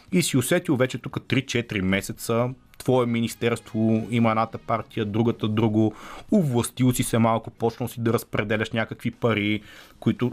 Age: 30-49